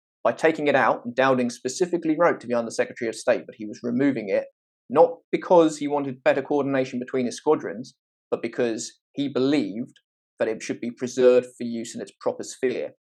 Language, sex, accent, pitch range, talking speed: English, male, British, 115-145 Hz, 190 wpm